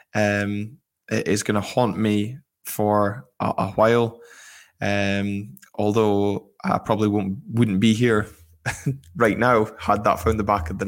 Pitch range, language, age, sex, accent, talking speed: 100-115 Hz, English, 10-29, male, British, 155 wpm